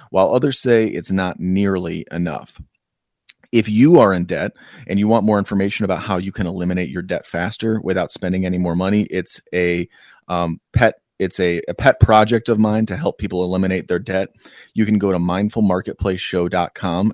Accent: American